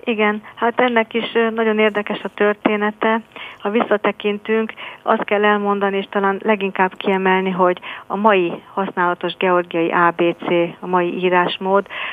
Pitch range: 175-200 Hz